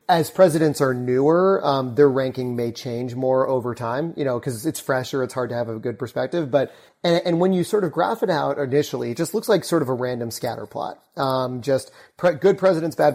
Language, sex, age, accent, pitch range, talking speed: English, male, 30-49, American, 125-155 Hz, 235 wpm